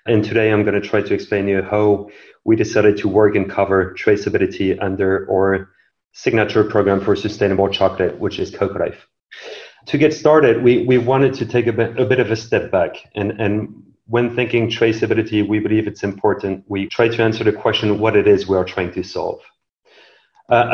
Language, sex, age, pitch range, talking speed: English, male, 30-49, 105-120 Hz, 195 wpm